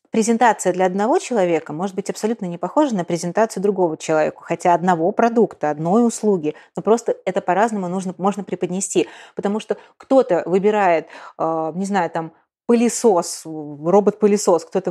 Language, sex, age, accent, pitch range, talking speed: Russian, female, 20-39, native, 170-210 Hz, 140 wpm